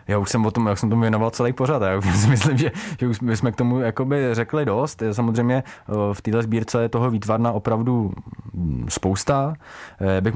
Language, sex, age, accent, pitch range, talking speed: Czech, male, 20-39, native, 100-120 Hz, 185 wpm